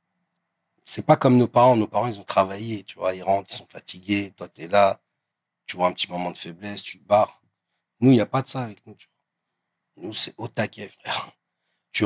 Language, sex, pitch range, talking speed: French, male, 110-150 Hz, 240 wpm